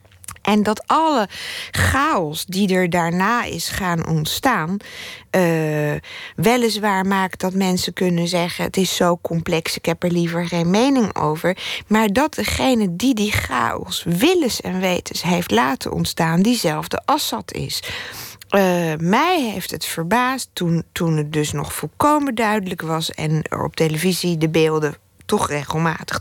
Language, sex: Dutch, female